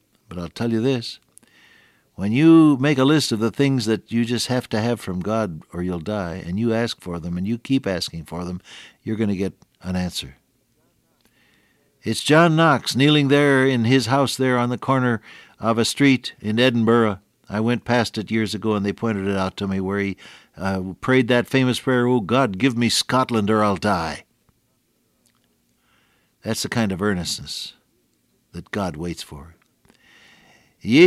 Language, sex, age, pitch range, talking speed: English, male, 60-79, 100-130 Hz, 185 wpm